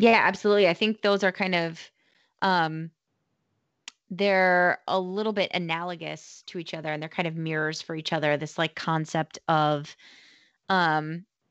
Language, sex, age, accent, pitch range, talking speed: English, female, 20-39, American, 155-180 Hz, 155 wpm